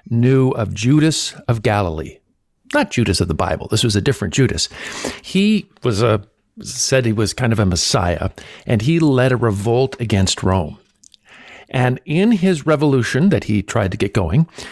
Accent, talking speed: American, 170 wpm